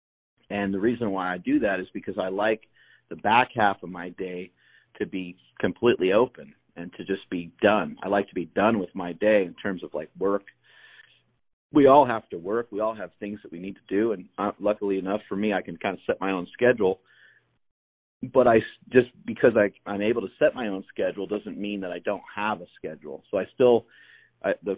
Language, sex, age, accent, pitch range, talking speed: English, male, 40-59, American, 95-110 Hz, 215 wpm